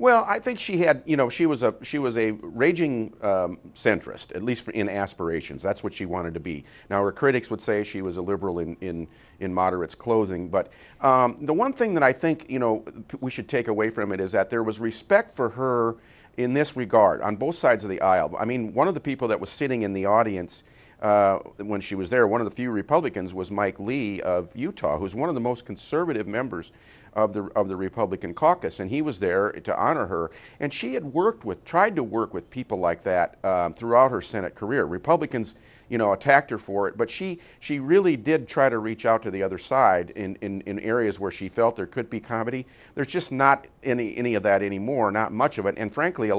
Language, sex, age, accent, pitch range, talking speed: English, male, 40-59, American, 95-125 Hz, 235 wpm